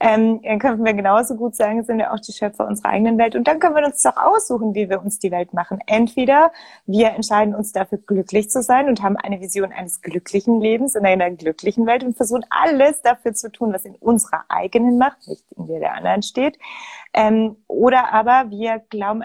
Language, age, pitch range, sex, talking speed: German, 30-49, 205-260 Hz, female, 215 wpm